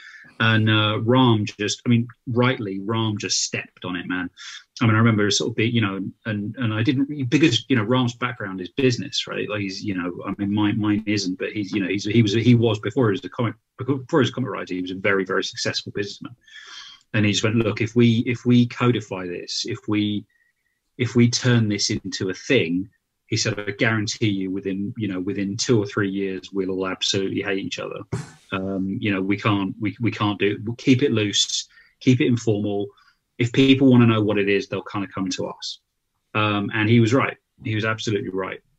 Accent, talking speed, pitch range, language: British, 225 wpm, 100-120 Hz, English